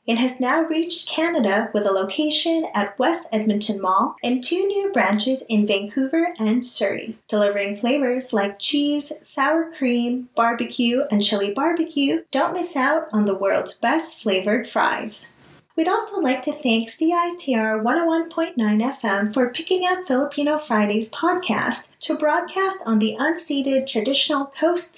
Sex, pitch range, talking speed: female, 215-310 Hz, 145 wpm